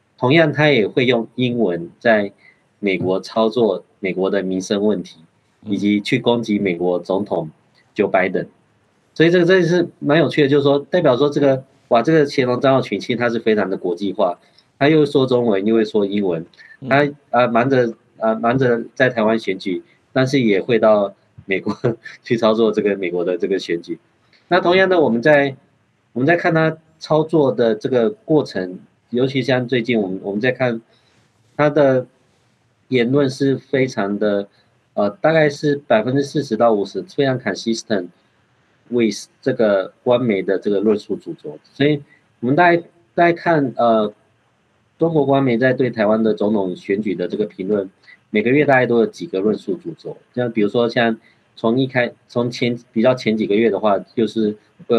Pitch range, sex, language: 105-140 Hz, male, Chinese